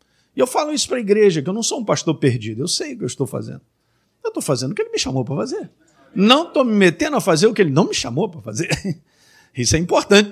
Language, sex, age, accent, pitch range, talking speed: Portuguese, male, 50-69, Brazilian, 155-225 Hz, 280 wpm